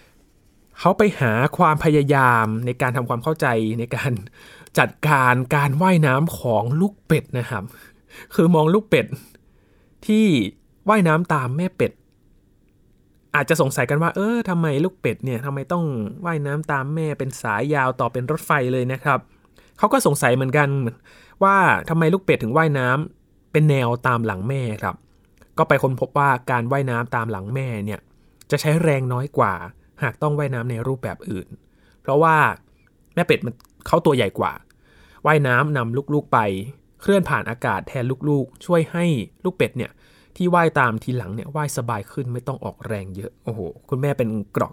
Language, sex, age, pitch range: Thai, male, 20-39, 120-155 Hz